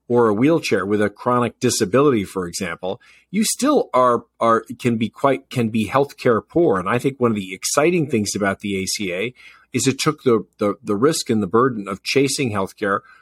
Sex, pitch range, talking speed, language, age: male, 110-135 Hz, 200 wpm, English, 40-59